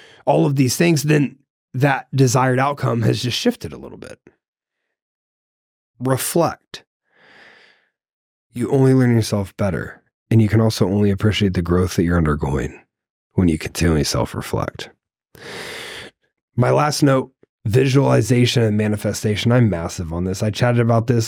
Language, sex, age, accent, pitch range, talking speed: English, male, 30-49, American, 100-130 Hz, 140 wpm